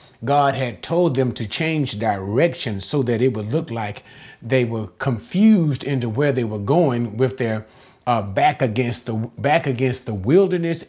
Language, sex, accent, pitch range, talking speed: English, male, American, 115-150 Hz, 170 wpm